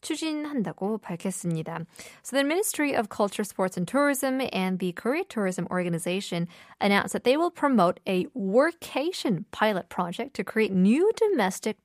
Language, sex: Korean, female